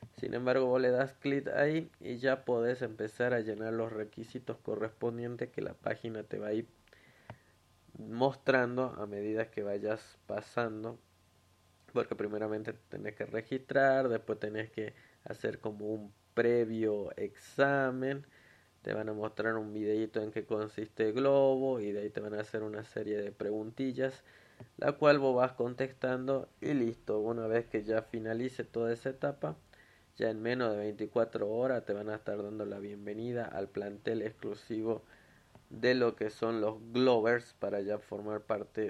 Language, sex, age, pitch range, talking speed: Spanish, male, 20-39, 105-125 Hz, 160 wpm